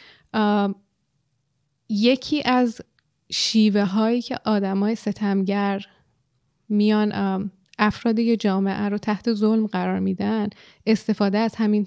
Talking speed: 90 wpm